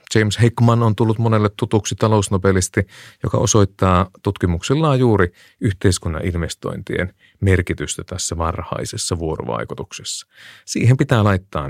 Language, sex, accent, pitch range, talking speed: Finnish, male, native, 90-125 Hz, 105 wpm